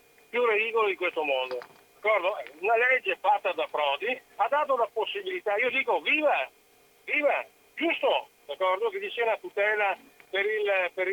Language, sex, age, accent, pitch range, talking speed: Italian, male, 50-69, native, 205-290 Hz, 135 wpm